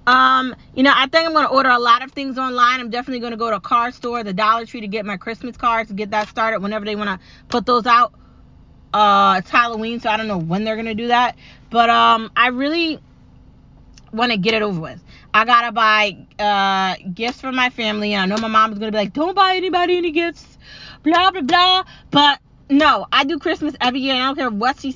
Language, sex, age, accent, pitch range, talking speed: English, female, 20-39, American, 210-260 Hz, 230 wpm